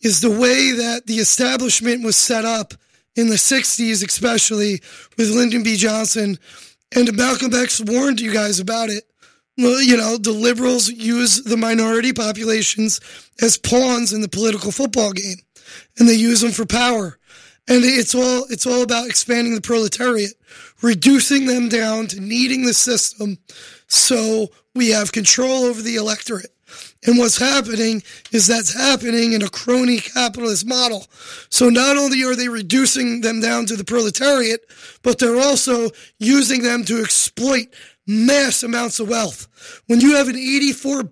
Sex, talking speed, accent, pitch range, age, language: male, 160 wpm, American, 225-250 Hz, 20-39, English